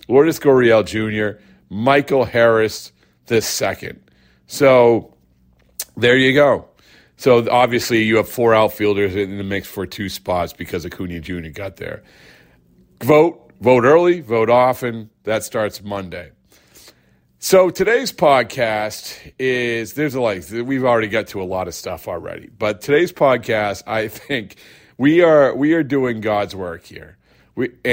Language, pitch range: English, 95-125 Hz